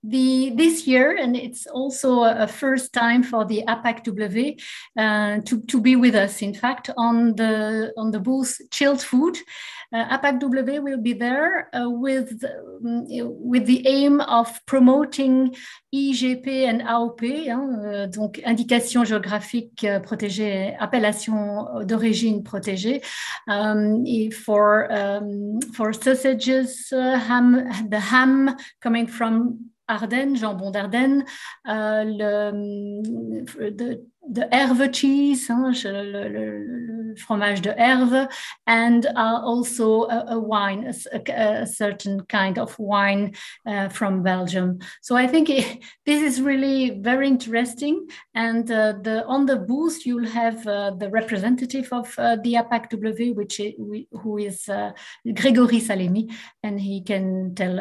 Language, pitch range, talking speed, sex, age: English, 210-255 Hz, 125 wpm, female, 60-79